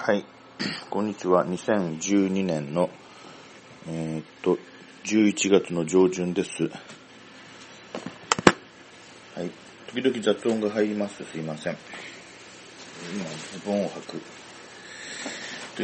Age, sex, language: 40-59, male, Japanese